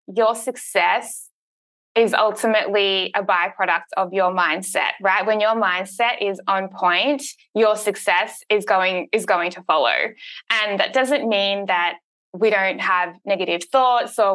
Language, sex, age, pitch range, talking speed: English, female, 20-39, 185-215 Hz, 145 wpm